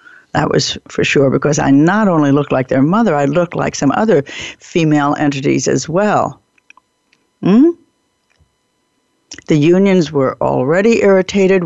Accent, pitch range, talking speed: American, 150-215 Hz, 140 wpm